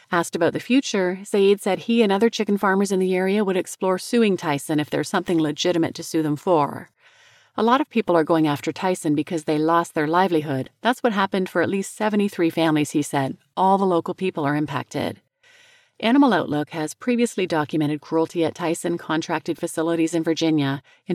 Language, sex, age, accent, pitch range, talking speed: English, female, 30-49, American, 155-210 Hz, 195 wpm